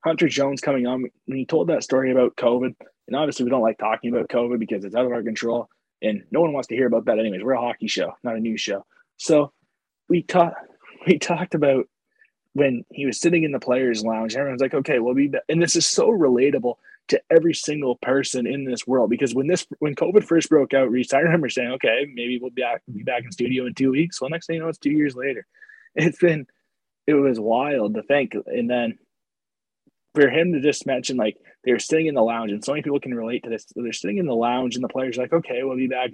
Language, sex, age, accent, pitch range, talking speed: English, male, 20-39, American, 125-160 Hz, 245 wpm